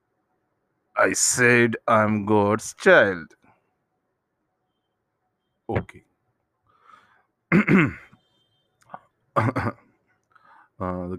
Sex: male